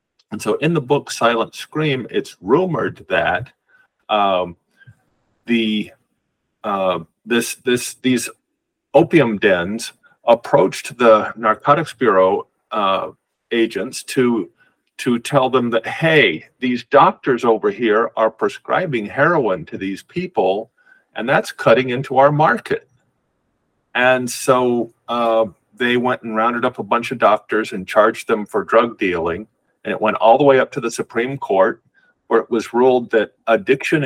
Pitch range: 110-135 Hz